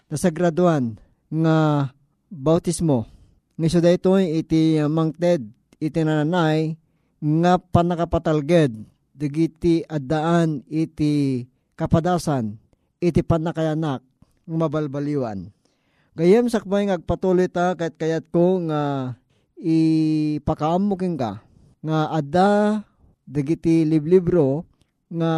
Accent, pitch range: native, 150-175 Hz